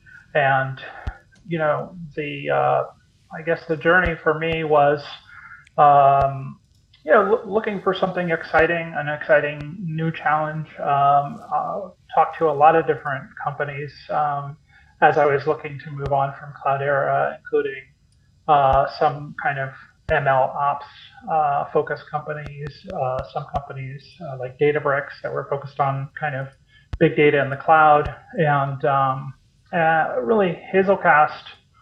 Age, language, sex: 30-49, English, male